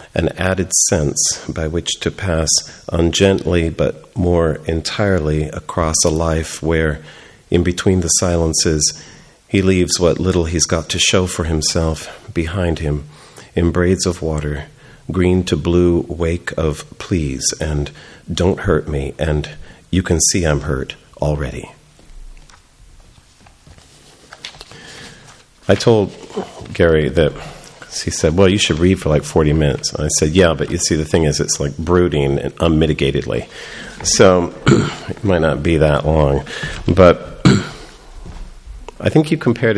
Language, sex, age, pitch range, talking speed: English, male, 40-59, 75-90 Hz, 140 wpm